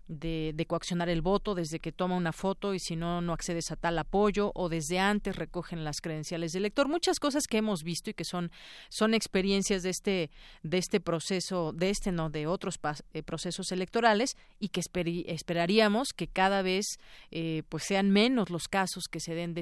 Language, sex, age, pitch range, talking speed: Spanish, female, 40-59, 165-195 Hz, 205 wpm